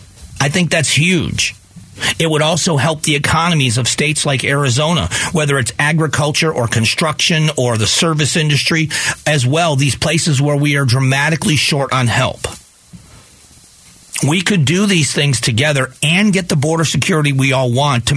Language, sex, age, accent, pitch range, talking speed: English, male, 40-59, American, 125-160 Hz, 160 wpm